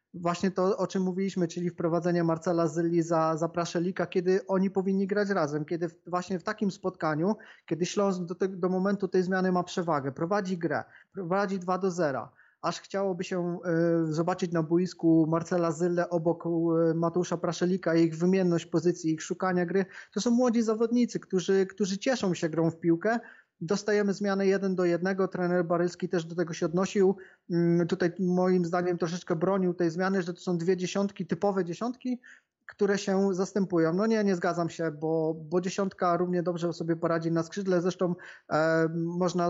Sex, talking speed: male, 175 wpm